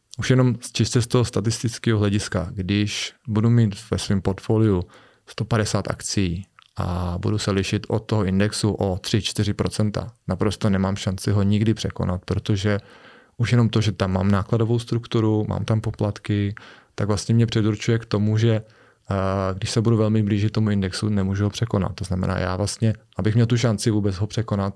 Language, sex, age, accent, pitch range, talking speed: Czech, male, 20-39, native, 100-110 Hz, 170 wpm